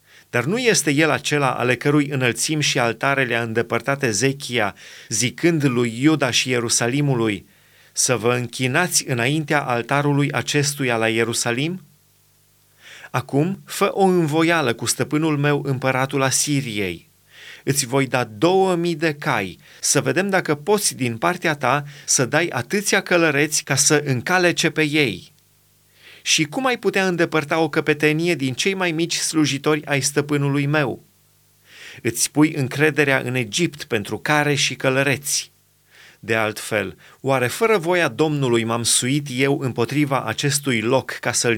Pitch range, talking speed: 120-155 Hz, 140 wpm